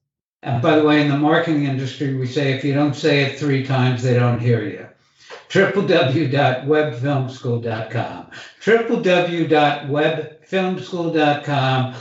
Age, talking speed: 60-79, 115 wpm